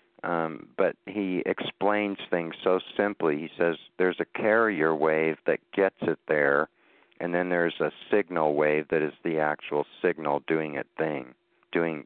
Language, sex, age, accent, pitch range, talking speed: English, male, 50-69, American, 75-85 Hz, 170 wpm